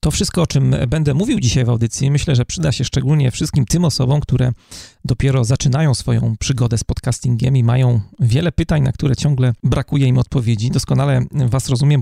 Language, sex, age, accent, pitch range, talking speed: Polish, male, 30-49, native, 125-150 Hz, 185 wpm